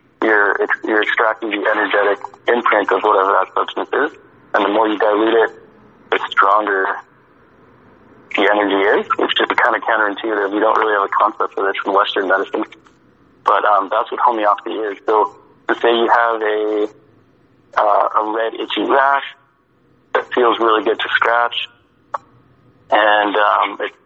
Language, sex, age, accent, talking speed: English, male, 20-39, American, 160 wpm